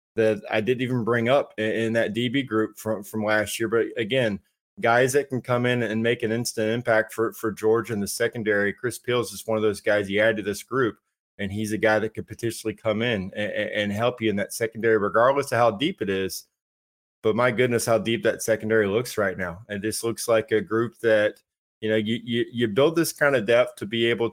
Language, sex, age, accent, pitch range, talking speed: English, male, 20-39, American, 110-120 Hz, 240 wpm